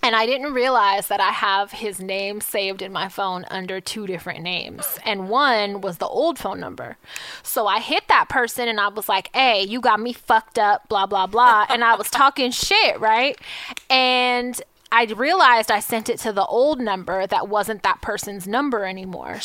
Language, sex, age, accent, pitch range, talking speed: English, female, 20-39, American, 195-240 Hz, 195 wpm